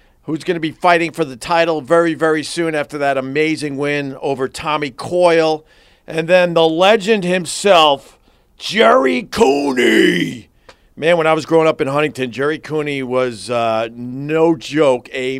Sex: male